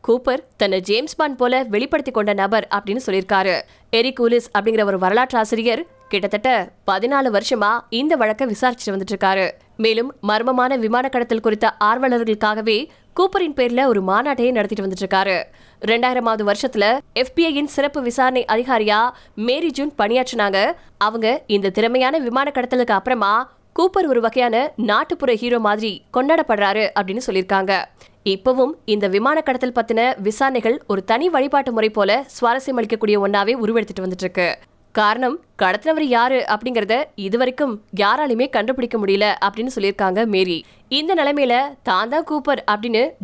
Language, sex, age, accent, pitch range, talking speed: Tamil, female, 20-39, native, 205-260 Hz, 35 wpm